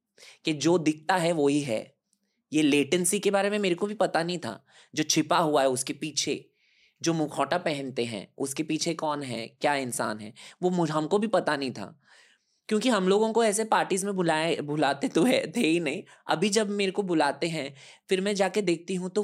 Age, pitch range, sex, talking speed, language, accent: 20-39, 150-210 Hz, male, 210 wpm, Hindi, native